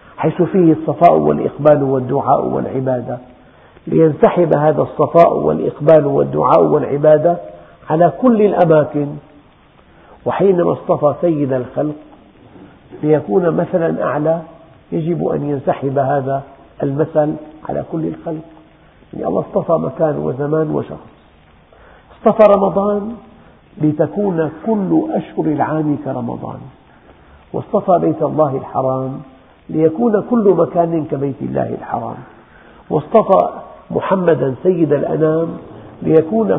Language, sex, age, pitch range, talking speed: Arabic, male, 50-69, 140-175 Hz, 95 wpm